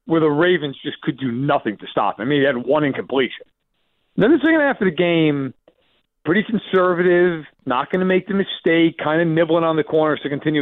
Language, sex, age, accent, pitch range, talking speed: English, male, 40-59, American, 140-180 Hz, 220 wpm